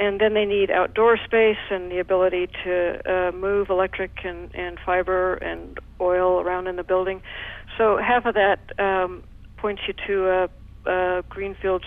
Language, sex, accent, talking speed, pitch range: English, female, American, 165 wpm, 175-190 Hz